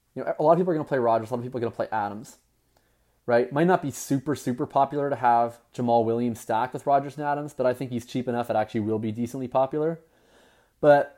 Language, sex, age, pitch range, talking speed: English, male, 20-39, 115-140 Hz, 265 wpm